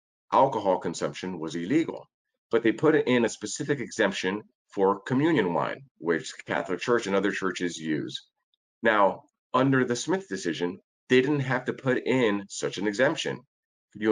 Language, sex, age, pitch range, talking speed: English, male, 40-59, 95-125 Hz, 155 wpm